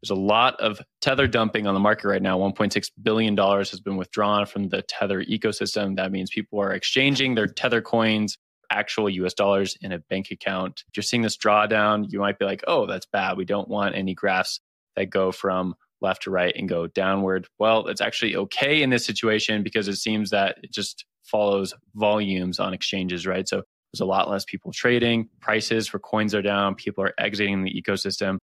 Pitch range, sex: 95-105 Hz, male